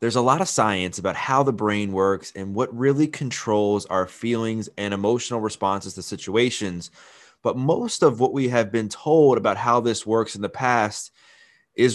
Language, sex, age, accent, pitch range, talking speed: English, male, 20-39, American, 105-135 Hz, 185 wpm